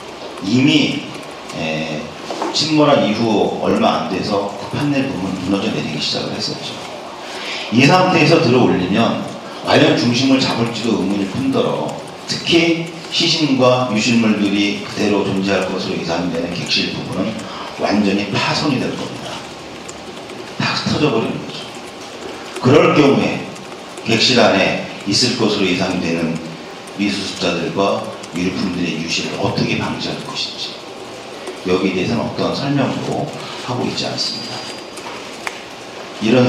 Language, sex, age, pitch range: Korean, male, 40-59, 90-125 Hz